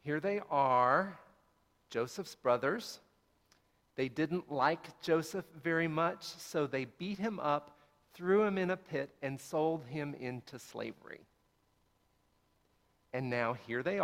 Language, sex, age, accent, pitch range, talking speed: English, male, 50-69, American, 125-160 Hz, 130 wpm